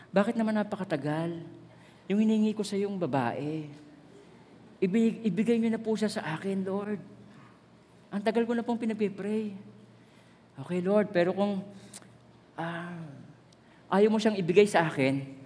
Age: 40-59